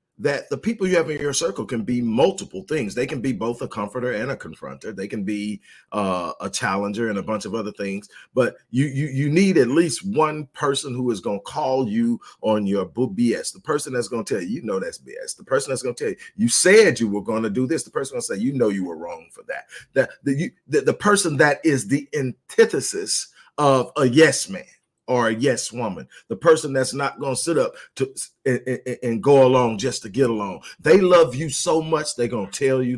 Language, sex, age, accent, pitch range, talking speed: English, male, 40-59, American, 125-165 Hz, 245 wpm